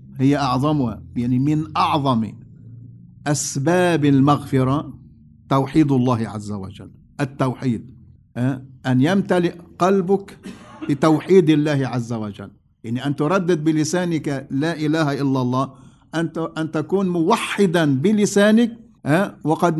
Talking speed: 95 wpm